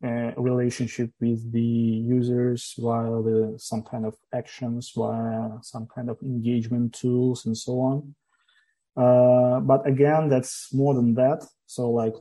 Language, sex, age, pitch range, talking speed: English, male, 30-49, 115-125 Hz, 140 wpm